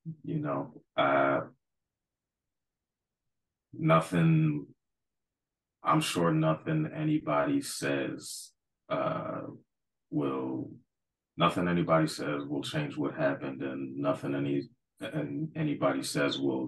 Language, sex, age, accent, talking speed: English, male, 30-49, American, 90 wpm